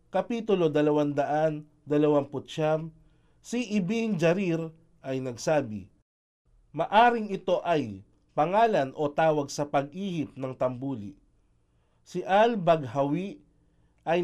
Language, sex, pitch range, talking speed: Filipino, male, 140-180 Hz, 85 wpm